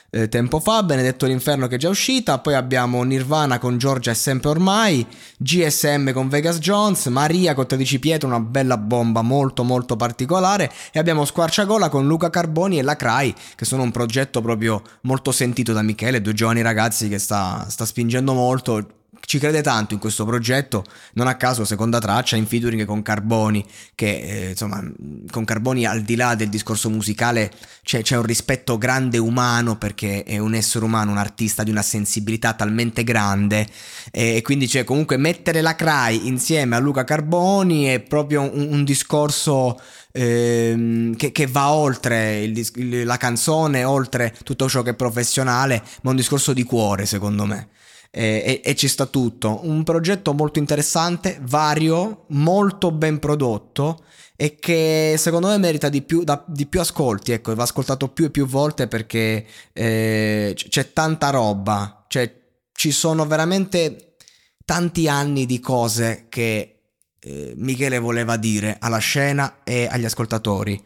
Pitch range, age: 110-150 Hz, 20-39